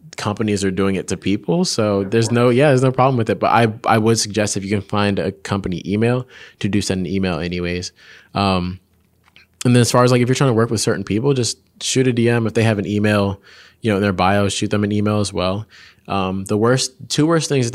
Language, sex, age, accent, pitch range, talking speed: English, male, 20-39, American, 90-110 Hz, 255 wpm